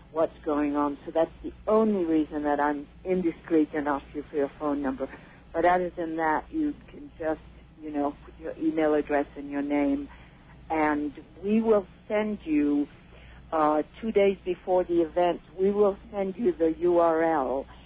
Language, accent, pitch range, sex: English, American, 155-185 Hz, female